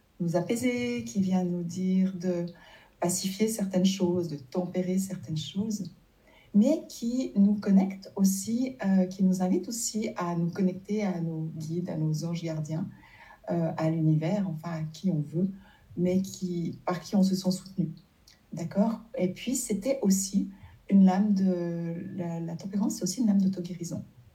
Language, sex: French, female